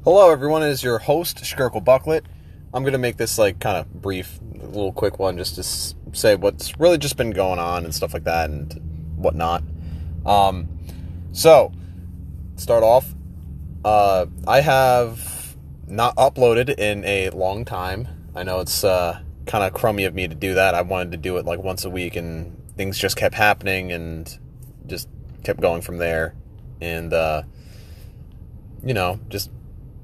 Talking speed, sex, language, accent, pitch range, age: 170 wpm, male, English, American, 85-105 Hz, 20-39